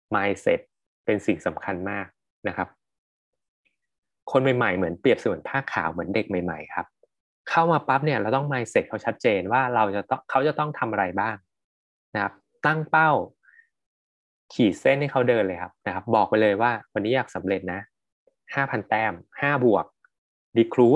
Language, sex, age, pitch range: Thai, male, 20-39, 105-150 Hz